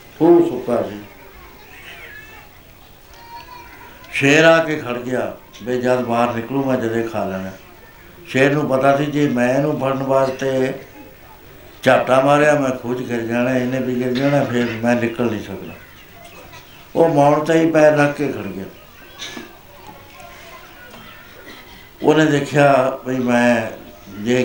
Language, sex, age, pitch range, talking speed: Punjabi, male, 60-79, 120-145 Hz, 125 wpm